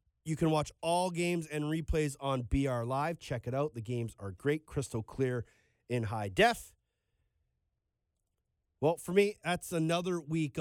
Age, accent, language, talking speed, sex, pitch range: 30-49, American, English, 160 wpm, male, 120-160 Hz